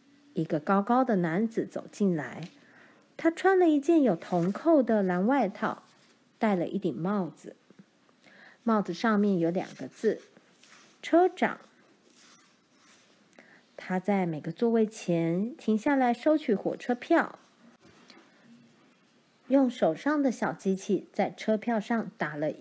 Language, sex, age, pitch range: Chinese, female, 50-69, 185-265 Hz